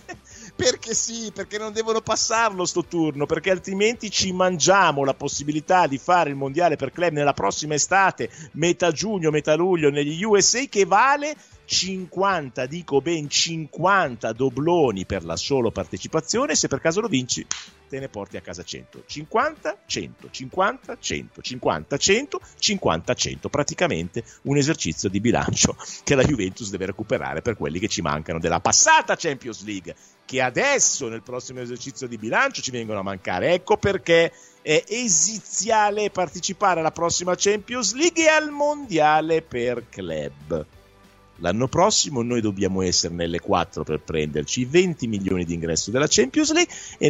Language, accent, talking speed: Italian, native, 155 wpm